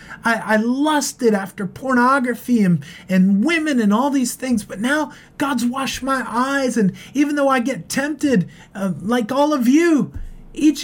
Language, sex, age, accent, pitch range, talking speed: English, male, 30-49, American, 200-275 Hz, 165 wpm